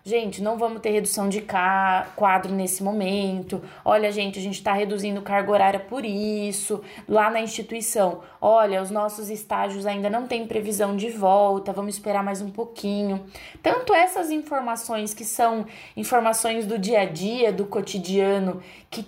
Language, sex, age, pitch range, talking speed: Portuguese, female, 20-39, 200-230 Hz, 160 wpm